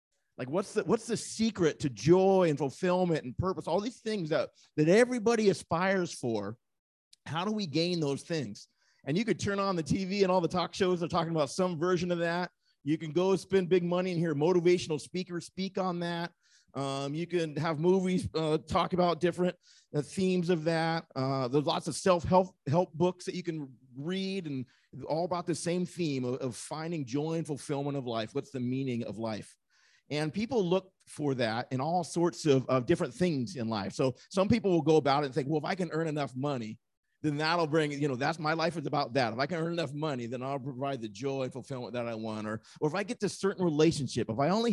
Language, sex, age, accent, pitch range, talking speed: English, male, 40-59, American, 135-180 Hz, 225 wpm